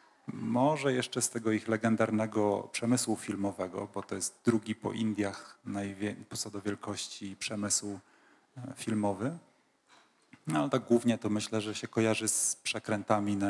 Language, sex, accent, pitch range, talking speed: Polish, male, native, 105-120 Hz, 140 wpm